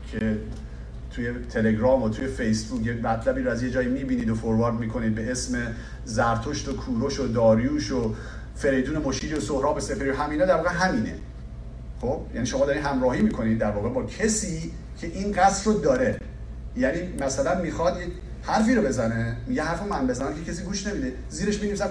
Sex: male